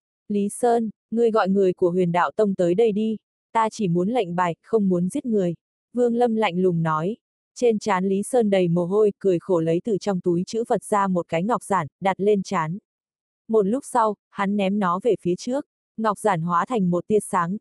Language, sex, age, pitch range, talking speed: Vietnamese, female, 20-39, 180-225 Hz, 220 wpm